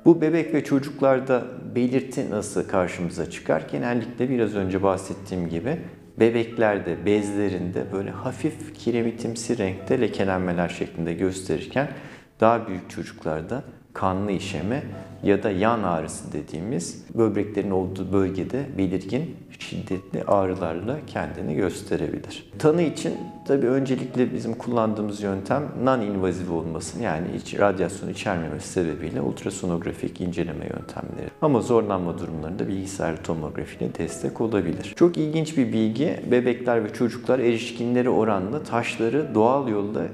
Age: 50-69